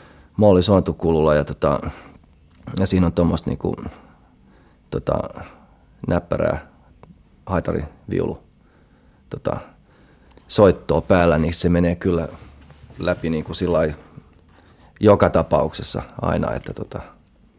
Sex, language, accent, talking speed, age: male, Finnish, native, 95 wpm, 30-49